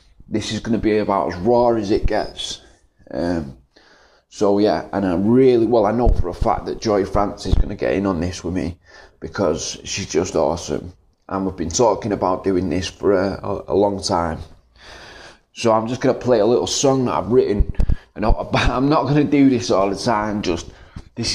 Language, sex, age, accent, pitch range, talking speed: English, male, 30-49, British, 95-115 Hz, 215 wpm